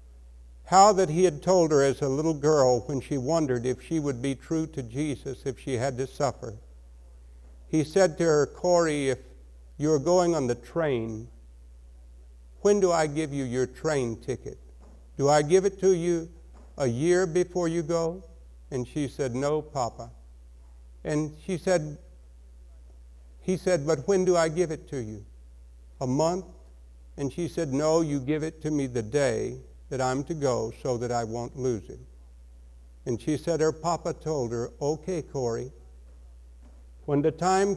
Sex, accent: male, American